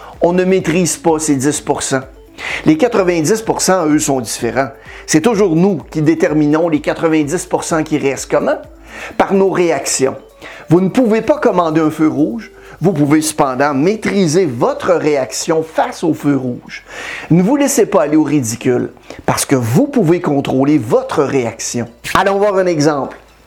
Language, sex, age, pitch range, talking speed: French, male, 50-69, 140-185 Hz, 155 wpm